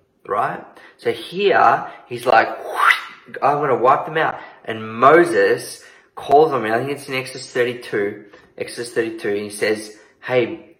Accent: Australian